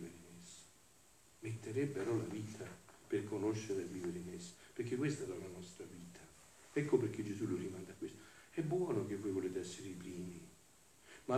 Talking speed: 165 wpm